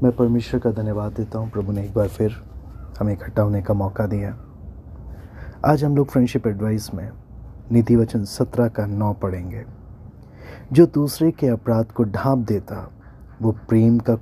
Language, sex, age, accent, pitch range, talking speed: Hindi, male, 30-49, native, 105-125 Hz, 165 wpm